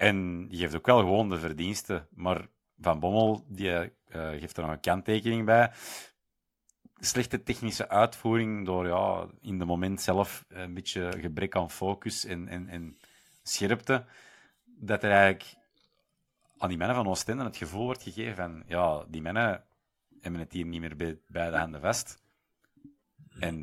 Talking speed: 165 wpm